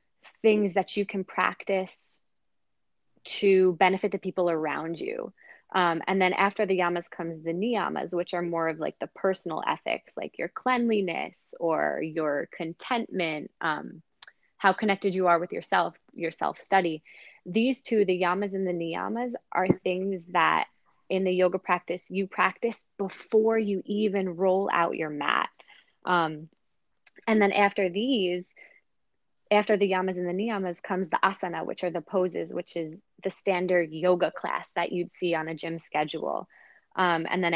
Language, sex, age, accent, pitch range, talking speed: English, female, 20-39, American, 170-200 Hz, 160 wpm